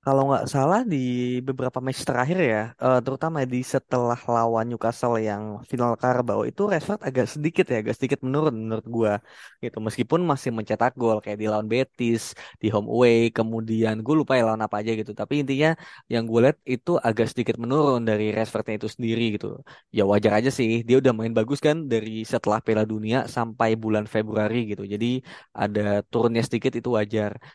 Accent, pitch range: native, 110-130 Hz